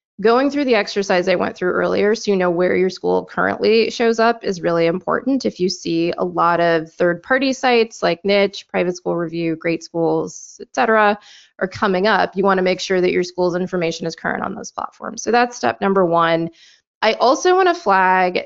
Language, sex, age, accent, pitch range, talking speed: English, female, 20-39, American, 180-225 Hz, 200 wpm